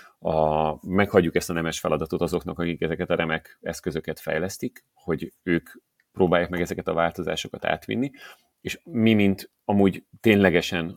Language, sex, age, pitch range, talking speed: Hungarian, male, 30-49, 80-90 Hz, 140 wpm